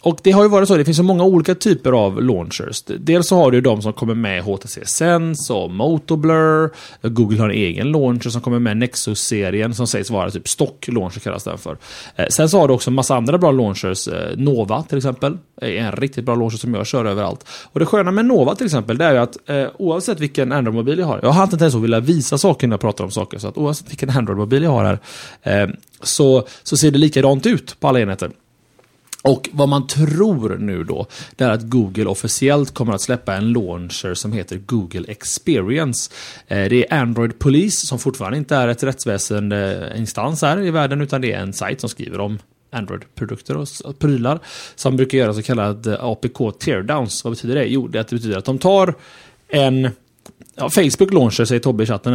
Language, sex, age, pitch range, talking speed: Swedish, male, 30-49, 110-150 Hz, 205 wpm